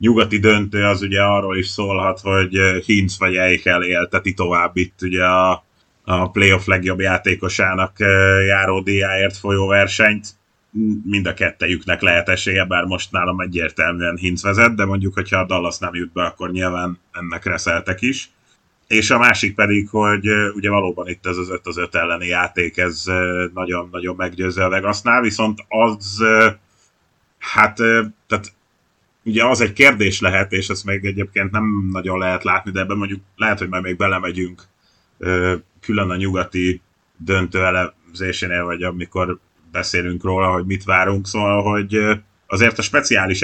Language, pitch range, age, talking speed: Hungarian, 90-105 Hz, 30-49, 150 wpm